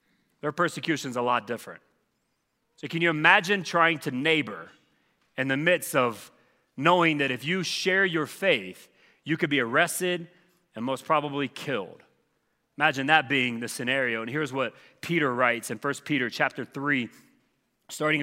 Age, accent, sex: 30-49, American, male